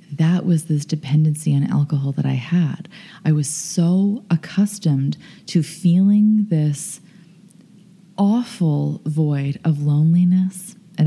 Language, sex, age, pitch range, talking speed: English, female, 20-39, 150-190 Hz, 115 wpm